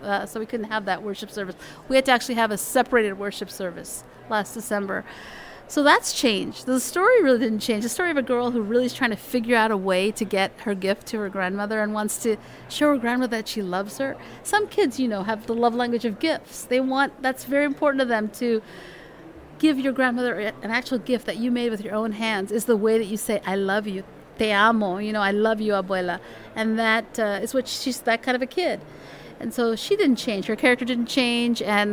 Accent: American